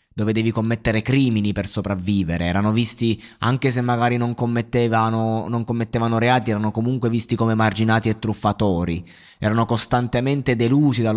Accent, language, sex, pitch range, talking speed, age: native, Italian, male, 105-135 Hz, 145 wpm, 20-39